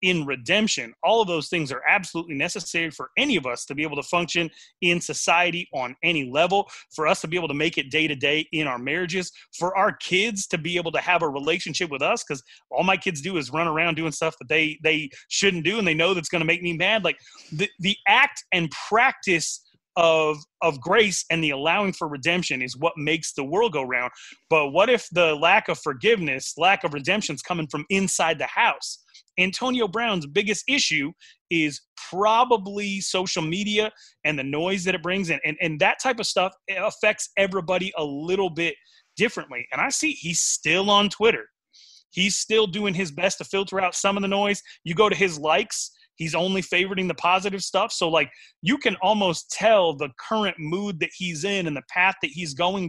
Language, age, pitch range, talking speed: English, 30-49, 160-195 Hz, 210 wpm